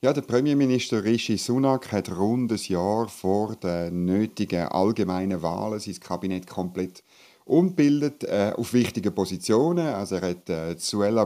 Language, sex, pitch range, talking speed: German, male, 95-125 Hz, 140 wpm